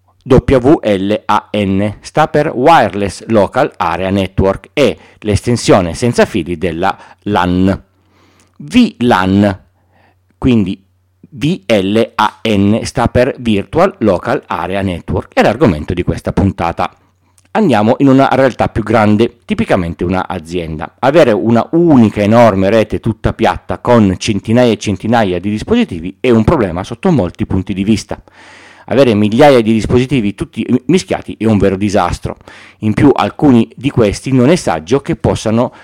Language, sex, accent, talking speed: Italian, male, native, 130 wpm